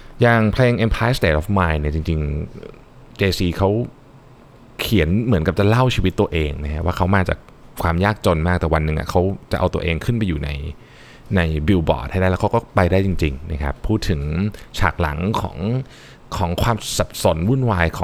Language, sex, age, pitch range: Thai, male, 20-39, 80-105 Hz